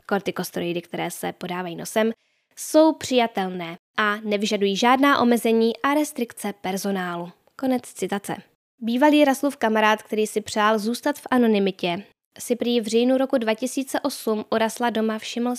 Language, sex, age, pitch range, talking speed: Czech, female, 10-29, 205-250 Hz, 135 wpm